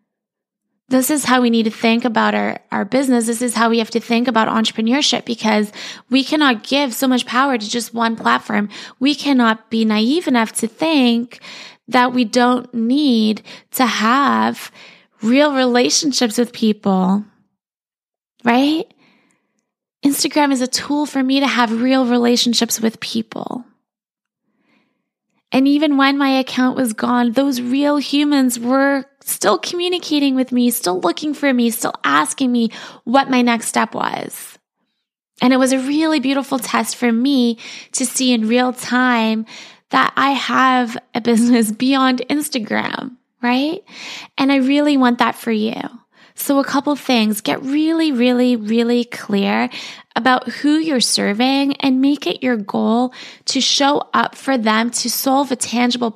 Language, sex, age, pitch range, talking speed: English, female, 20-39, 230-270 Hz, 155 wpm